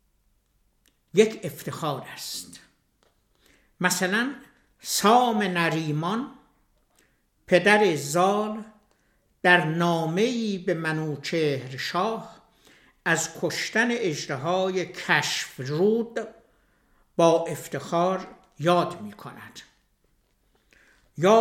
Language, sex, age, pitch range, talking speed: German, male, 60-79, 160-210 Hz, 70 wpm